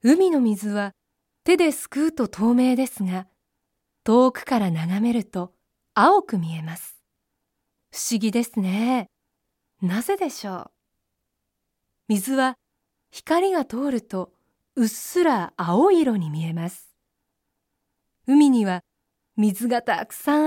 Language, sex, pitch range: Japanese, female, 190-280 Hz